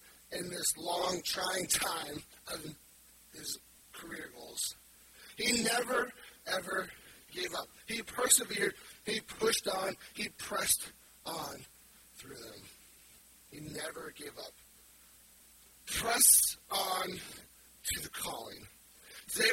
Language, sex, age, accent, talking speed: English, male, 40-59, American, 105 wpm